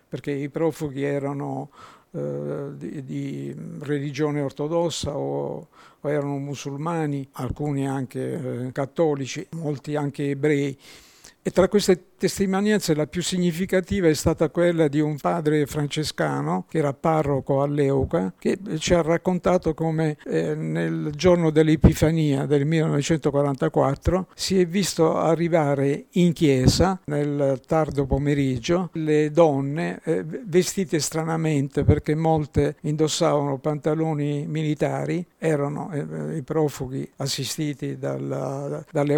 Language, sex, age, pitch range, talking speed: Italian, male, 60-79, 140-160 Hz, 115 wpm